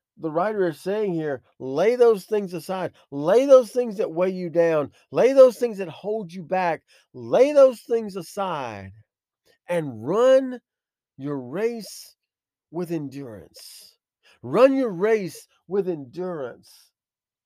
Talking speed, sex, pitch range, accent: 130 wpm, male, 140-205 Hz, American